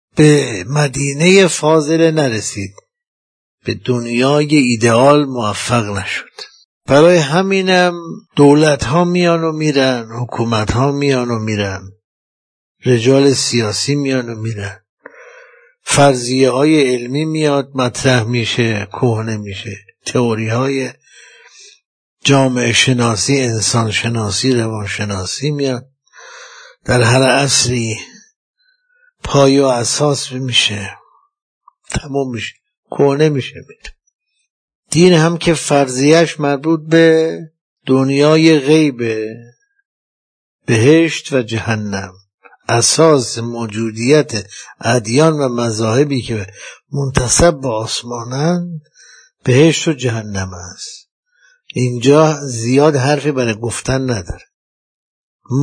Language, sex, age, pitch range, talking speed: Persian, male, 60-79, 115-160 Hz, 90 wpm